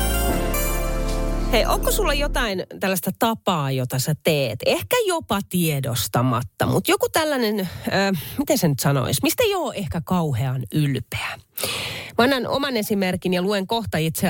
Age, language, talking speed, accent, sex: 30-49, Finnish, 135 wpm, native, female